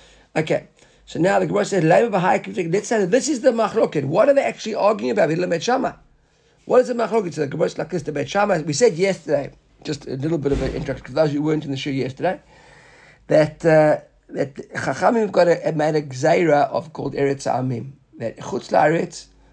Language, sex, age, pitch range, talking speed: English, male, 50-69, 135-175 Hz, 190 wpm